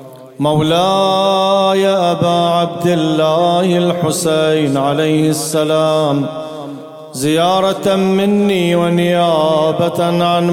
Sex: male